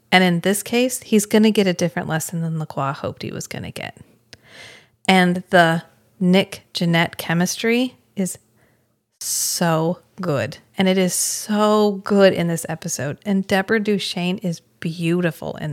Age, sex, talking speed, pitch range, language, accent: 30-49, female, 155 wpm, 160-195 Hz, English, American